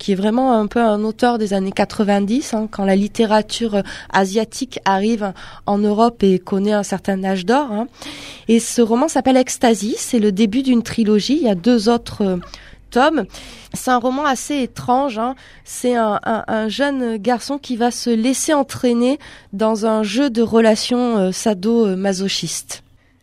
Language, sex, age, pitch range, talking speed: French, female, 20-39, 215-260 Hz, 165 wpm